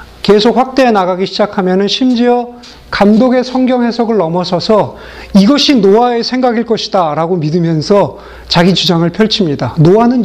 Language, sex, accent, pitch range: Korean, male, native, 170-230 Hz